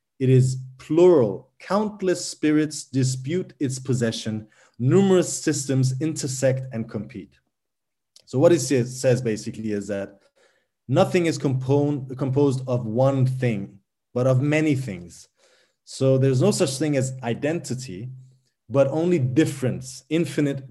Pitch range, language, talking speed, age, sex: 130-165 Hz, English, 120 wpm, 30-49, male